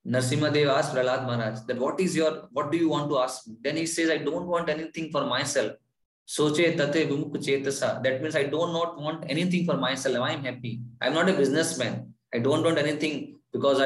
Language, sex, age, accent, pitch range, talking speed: English, male, 20-39, Indian, 125-160 Hz, 195 wpm